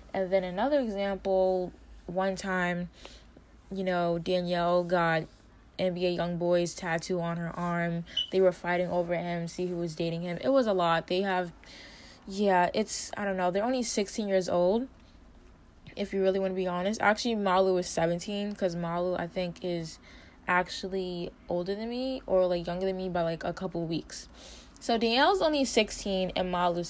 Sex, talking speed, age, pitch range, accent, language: female, 175 wpm, 10-29, 175-215 Hz, American, English